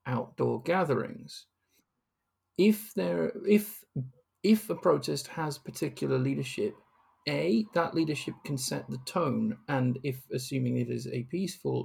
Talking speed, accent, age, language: 125 wpm, British, 40-59, English